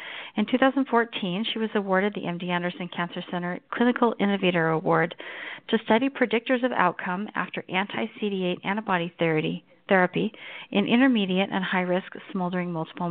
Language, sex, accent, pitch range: English, female, American, 175-220 Hz